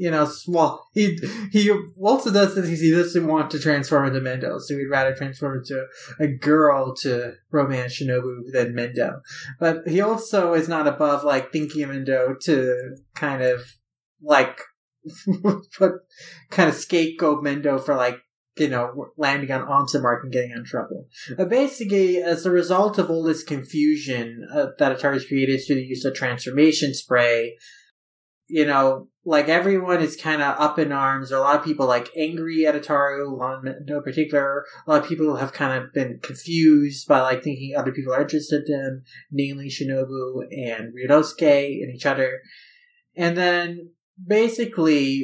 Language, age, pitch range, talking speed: English, 30-49, 135-165 Hz, 170 wpm